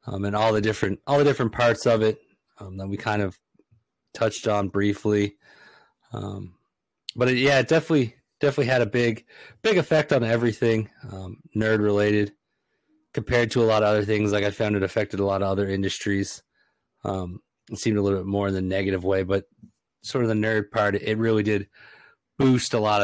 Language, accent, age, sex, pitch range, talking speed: English, American, 30-49, male, 100-115 Hz, 195 wpm